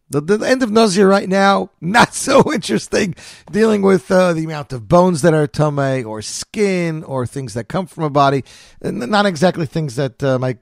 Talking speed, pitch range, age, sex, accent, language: 205 wpm, 140-205 Hz, 40-59, male, American, English